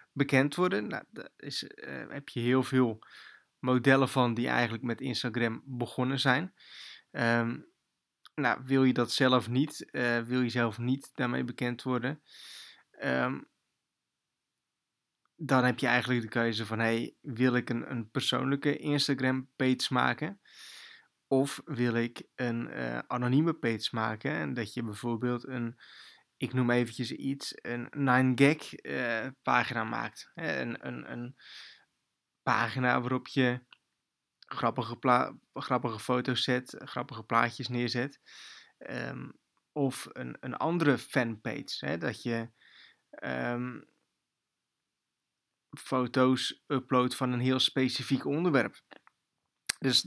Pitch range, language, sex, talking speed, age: 120-135 Hz, Dutch, male, 125 wpm, 20-39